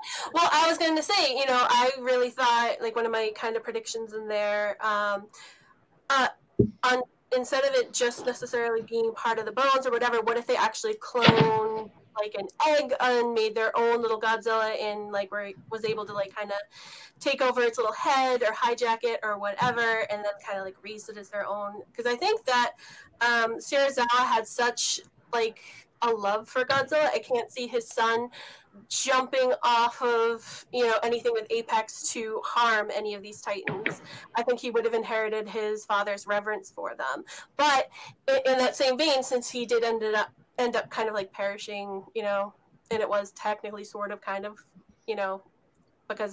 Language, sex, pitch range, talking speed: English, female, 210-250 Hz, 190 wpm